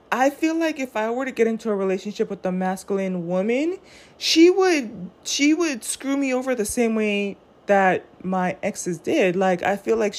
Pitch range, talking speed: 200-285 Hz, 195 wpm